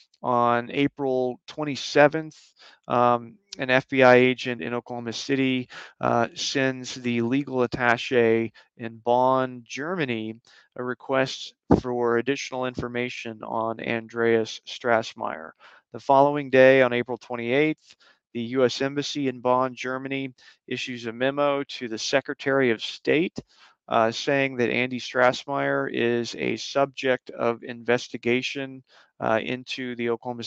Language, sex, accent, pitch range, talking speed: English, male, American, 120-130 Hz, 120 wpm